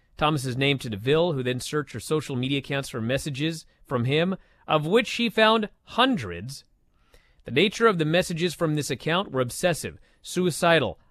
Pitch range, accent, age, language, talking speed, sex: 130-175 Hz, American, 30-49, English, 165 wpm, male